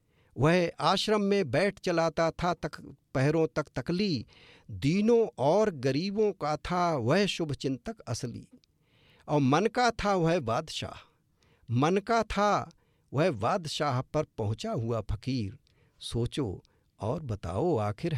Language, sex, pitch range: English, male, 125-195 Hz